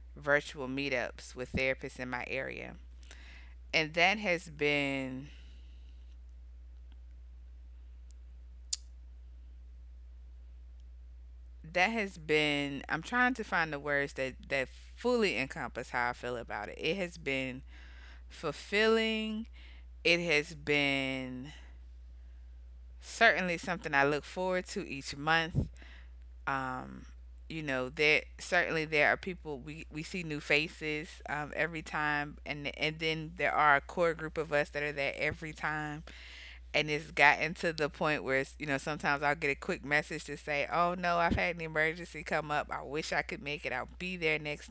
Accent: American